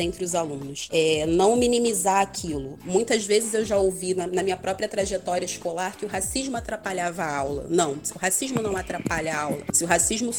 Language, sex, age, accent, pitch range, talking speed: Portuguese, female, 30-49, Brazilian, 180-215 Hz, 190 wpm